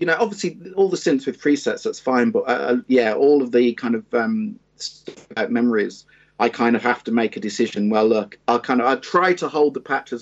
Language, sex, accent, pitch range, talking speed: English, male, British, 120-185 Hz, 245 wpm